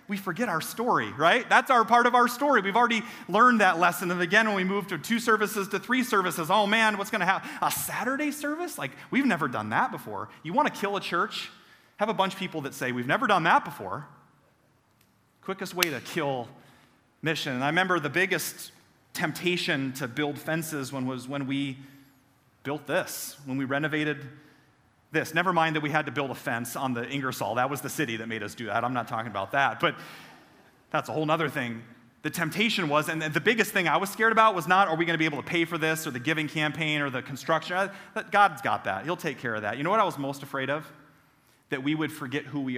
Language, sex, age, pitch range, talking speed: English, male, 30-49, 140-190 Hz, 235 wpm